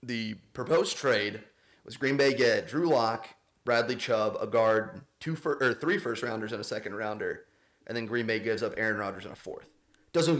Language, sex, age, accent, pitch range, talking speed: English, male, 30-49, American, 115-155 Hz, 200 wpm